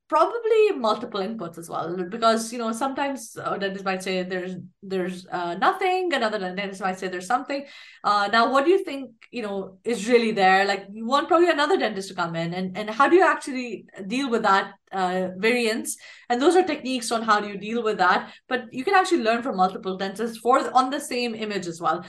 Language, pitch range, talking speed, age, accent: English, 190-255 Hz, 215 wpm, 20-39, Indian